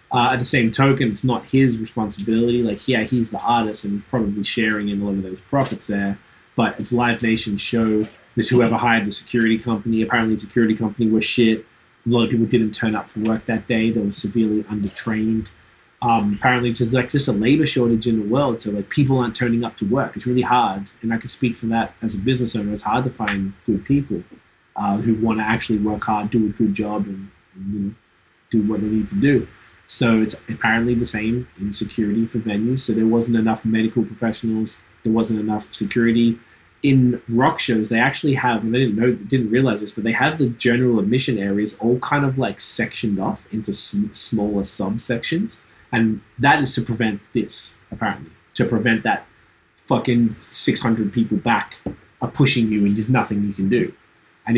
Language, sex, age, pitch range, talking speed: English, male, 20-39, 105-120 Hz, 205 wpm